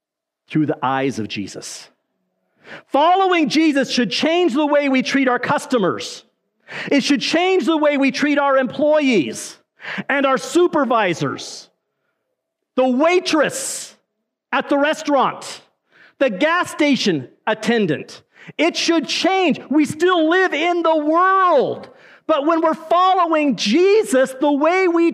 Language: English